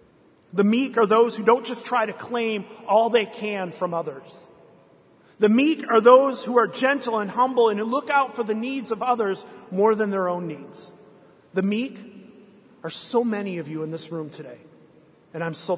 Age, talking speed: 30-49, 200 wpm